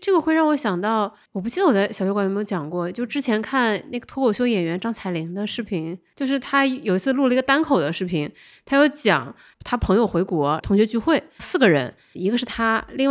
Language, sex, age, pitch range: Chinese, female, 20-39, 190-270 Hz